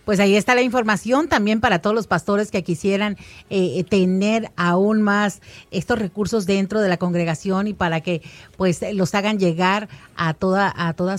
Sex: female